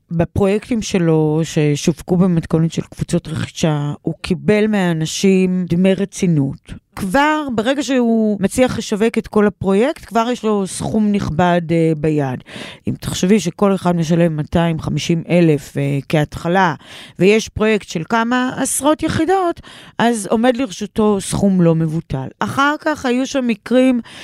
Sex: female